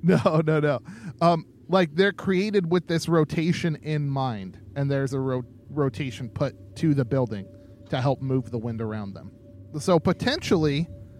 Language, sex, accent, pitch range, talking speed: English, male, American, 115-165 Hz, 160 wpm